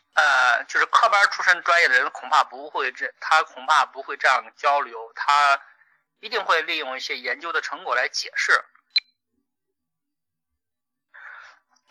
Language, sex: Chinese, male